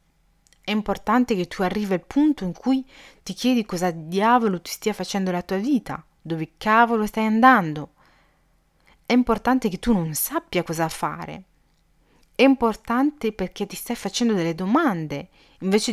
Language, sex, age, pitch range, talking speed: Italian, female, 30-49, 170-230 Hz, 150 wpm